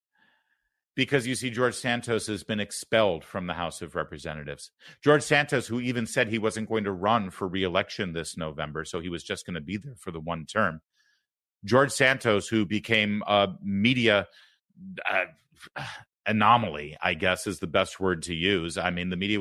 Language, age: English, 40-59